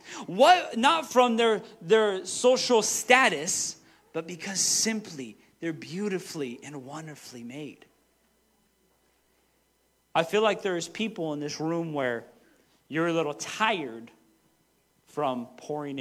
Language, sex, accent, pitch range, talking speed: English, male, American, 140-220 Hz, 115 wpm